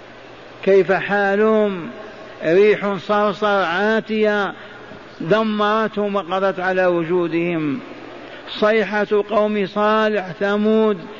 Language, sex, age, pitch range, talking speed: Arabic, male, 50-69, 170-200 Hz, 70 wpm